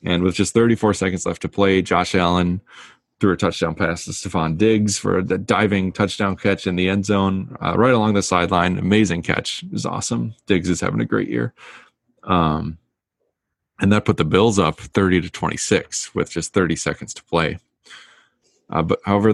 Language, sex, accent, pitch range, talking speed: English, male, American, 90-105 Hz, 185 wpm